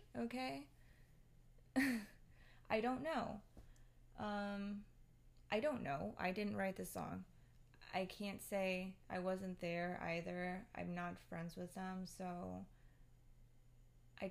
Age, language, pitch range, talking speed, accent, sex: 20-39, English, 125-210 Hz, 115 wpm, American, female